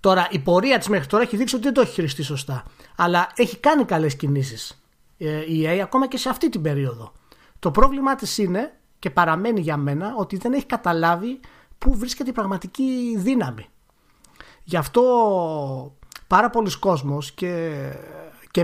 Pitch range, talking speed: 145-210 Hz, 165 wpm